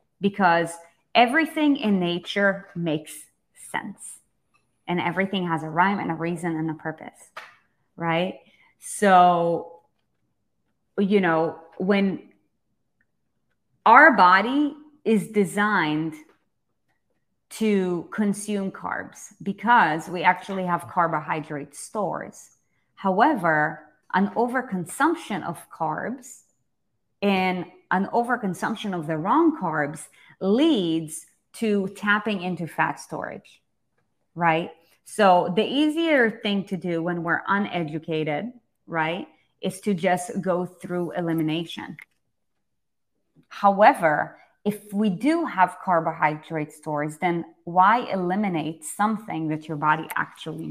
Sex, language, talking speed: female, English, 100 wpm